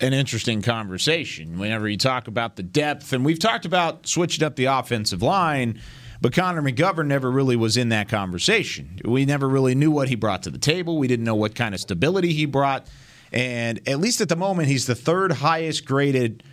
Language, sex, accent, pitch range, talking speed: English, male, American, 110-145 Hz, 205 wpm